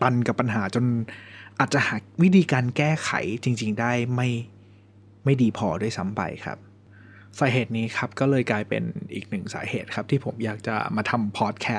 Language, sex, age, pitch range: Thai, male, 20-39, 105-130 Hz